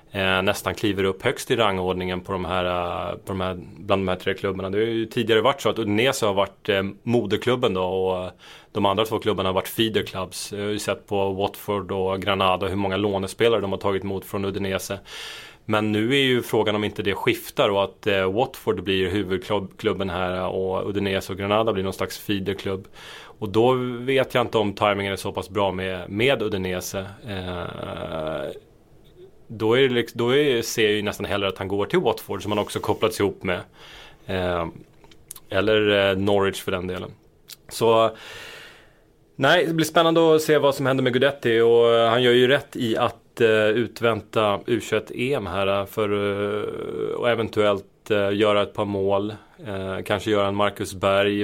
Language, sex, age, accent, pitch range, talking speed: Swedish, male, 30-49, native, 95-110 Hz, 175 wpm